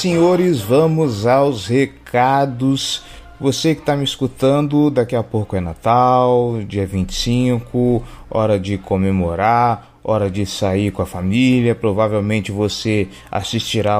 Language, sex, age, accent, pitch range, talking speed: Portuguese, male, 20-39, Brazilian, 115-145 Hz, 120 wpm